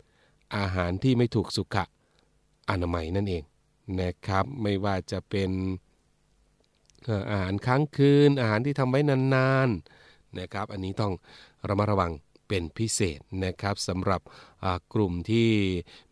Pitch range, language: 95-120 Hz, Thai